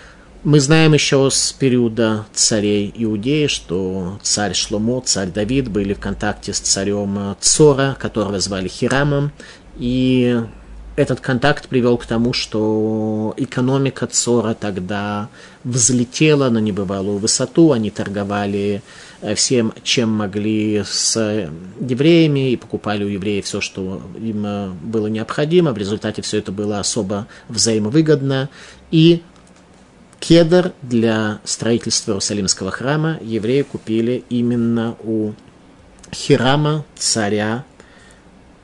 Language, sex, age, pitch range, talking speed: Russian, male, 30-49, 105-135 Hz, 110 wpm